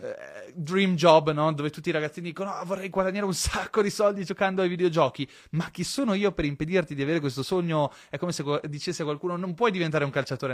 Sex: male